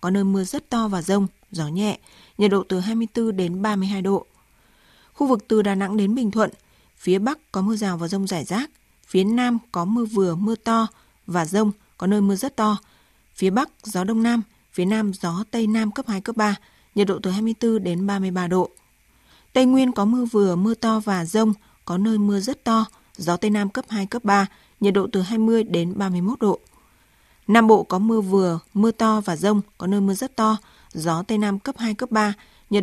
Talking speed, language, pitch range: 215 wpm, Vietnamese, 190-225 Hz